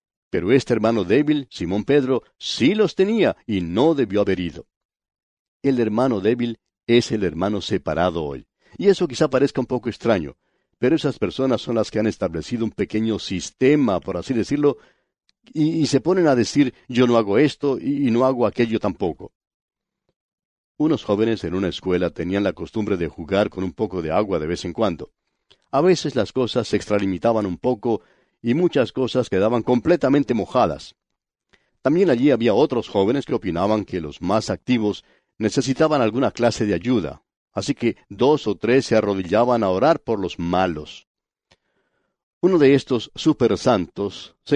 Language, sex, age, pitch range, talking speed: English, male, 60-79, 100-135 Hz, 170 wpm